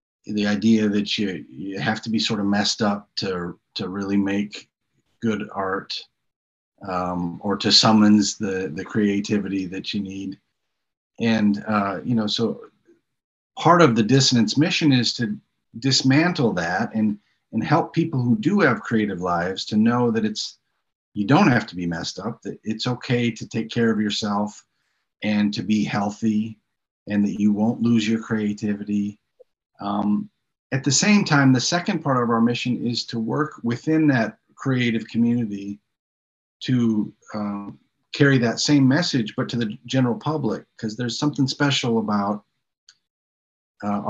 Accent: American